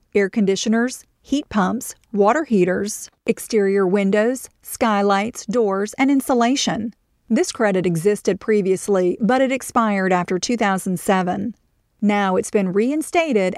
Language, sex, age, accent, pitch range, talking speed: English, female, 40-59, American, 195-250 Hz, 110 wpm